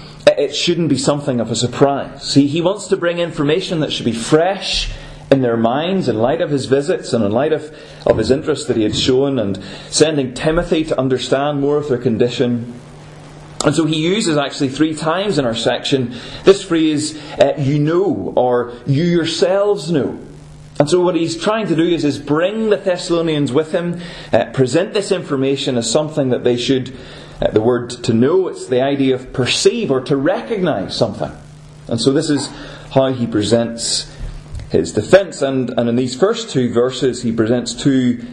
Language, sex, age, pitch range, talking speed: English, male, 30-49, 125-160 Hz, 190 wpm